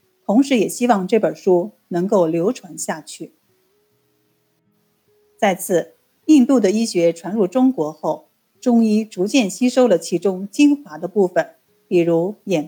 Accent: native